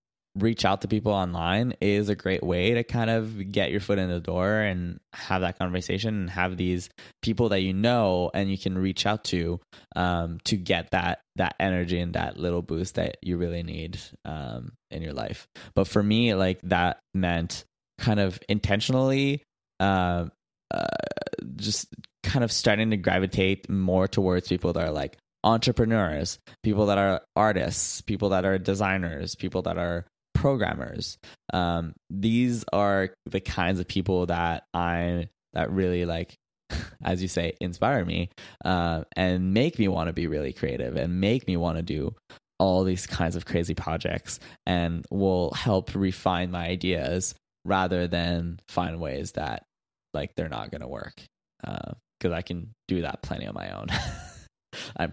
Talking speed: 170 wpm